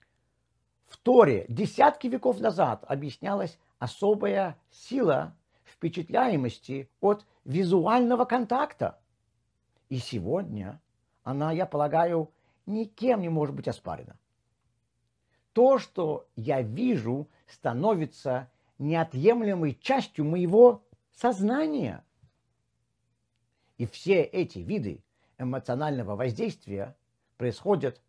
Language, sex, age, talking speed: Russian, male, 50-69, 80 wpm